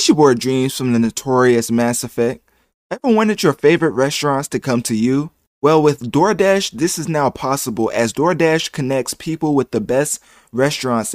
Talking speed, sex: 170 wpm, male